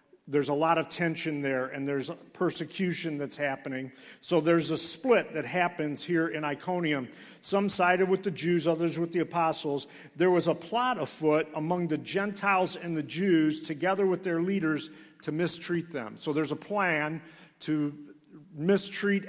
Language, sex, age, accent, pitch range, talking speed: English, male, 50-69, American, 155-180 Hz, 165 wpm